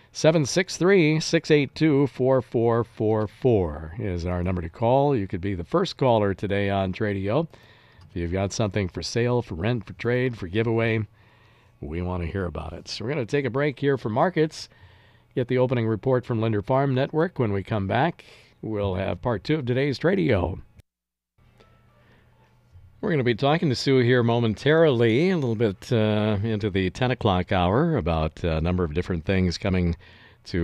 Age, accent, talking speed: 50-69, American, 170 wpm